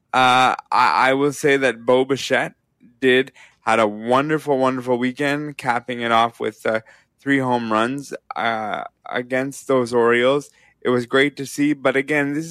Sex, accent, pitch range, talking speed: male, American, 125-145 Hz, 160 wpm